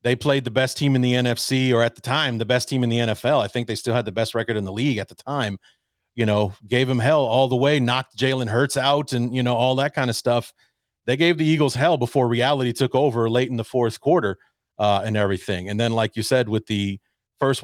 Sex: male